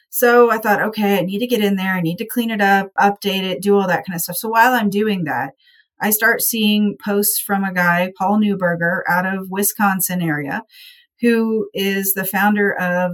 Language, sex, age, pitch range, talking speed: English, female, 30-49, 190-220 Hz, 215 wpm